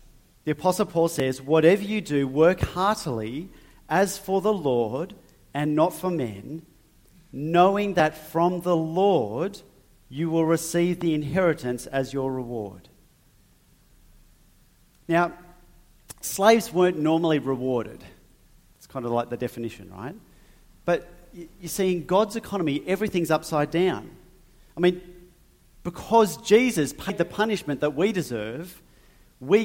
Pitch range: 145-190 Hz